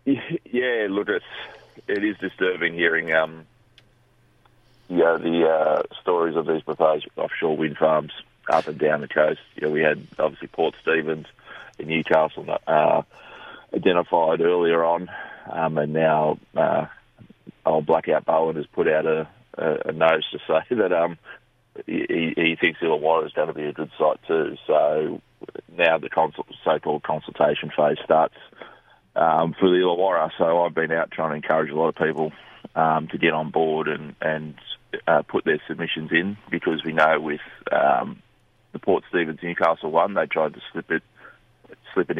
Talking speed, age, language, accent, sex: 160 wpm, 30-49, English, Australian, male